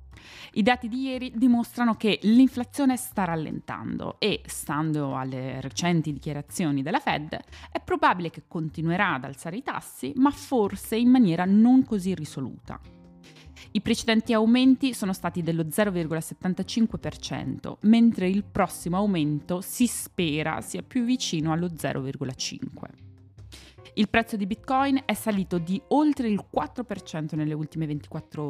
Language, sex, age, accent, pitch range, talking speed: Italian, female, 20-39, native, 155-225 Hz, 130 wpm